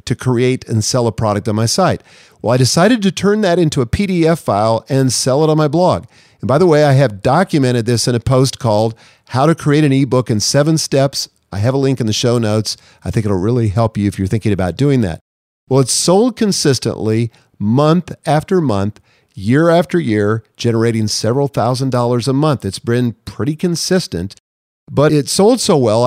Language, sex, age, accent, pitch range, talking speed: English, male, 50-69, American, 110-150 Hz, 205 wpm